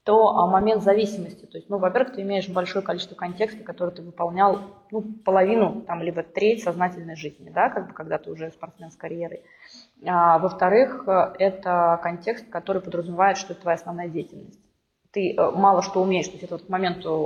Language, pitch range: Russian, 175-205 Hz